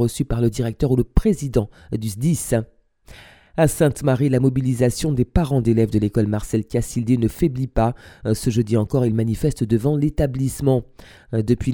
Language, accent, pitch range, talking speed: French, French, 110-140 Hz, 160 wpm